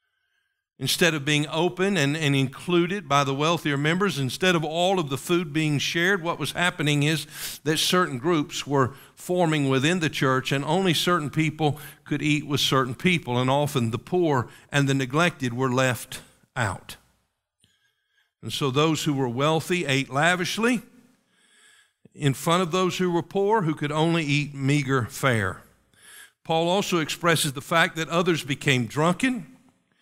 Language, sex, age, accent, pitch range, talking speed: English, male, 50-69, American, 140-185 Hz, 160 wpm